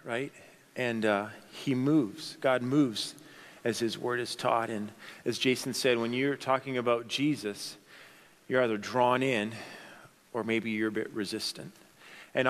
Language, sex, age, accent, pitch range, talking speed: English, male, 40-59, American, 115-160 Hz, 155 wpm